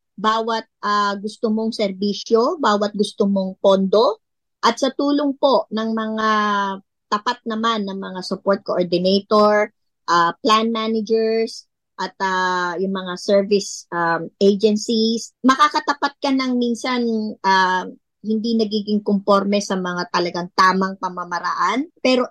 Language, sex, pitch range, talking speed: Filipino, male, 190-240 Hz, 120 wpm